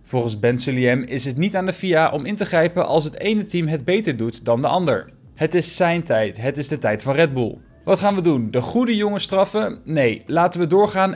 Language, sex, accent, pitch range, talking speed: Dutch, male, Dutch, 135-185 Hz, 240 wpm